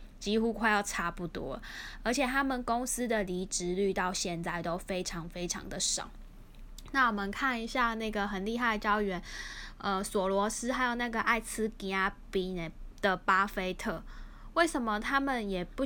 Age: 10-29